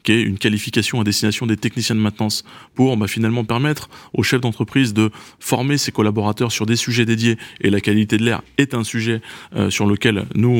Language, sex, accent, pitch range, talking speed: French, male, French, 105-125 Hz, 210 wpm